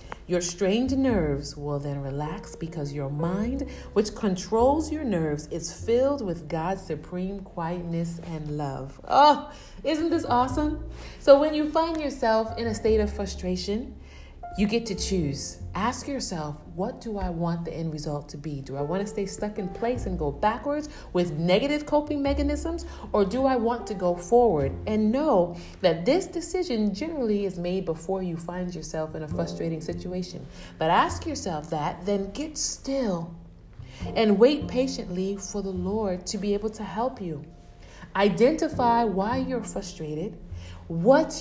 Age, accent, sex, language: 30-49, American, female, English